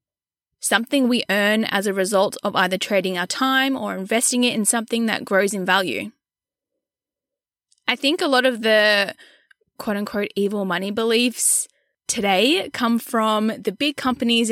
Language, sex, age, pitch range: English, female, 10-29, 205-260 Hz